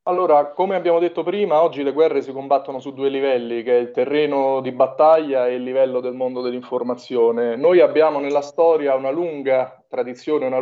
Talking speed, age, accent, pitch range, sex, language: 185 wpm, 30-49, native, 125-140 Hz, male, Italian